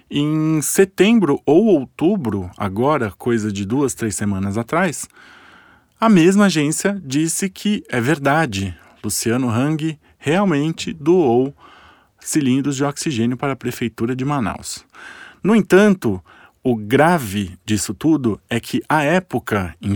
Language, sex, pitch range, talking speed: Portuguese, male, 110-155 Hz, 125 wpm